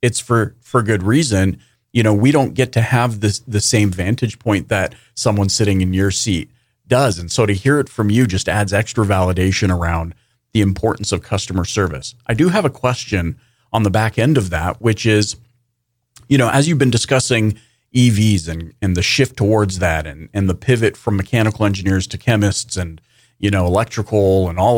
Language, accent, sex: English, American, male